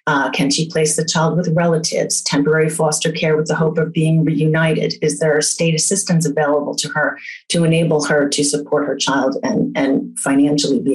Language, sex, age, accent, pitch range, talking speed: English, female, 30-49, American, 150-185 Hz, 190 wpm